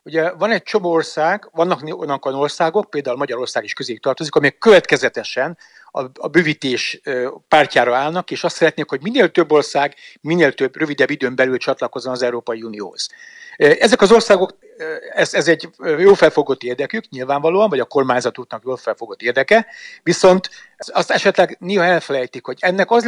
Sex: male